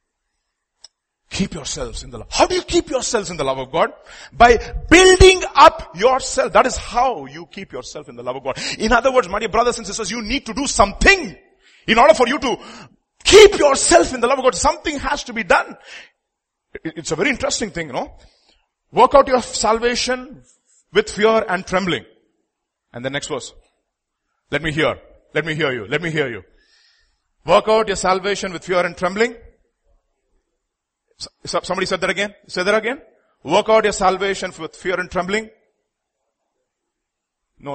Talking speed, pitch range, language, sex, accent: 185 wpm, 170-270 Hz, English, male, Indian